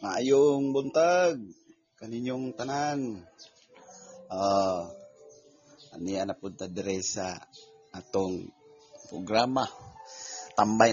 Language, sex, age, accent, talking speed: Filipino, male, 30-49, native, 70 wpm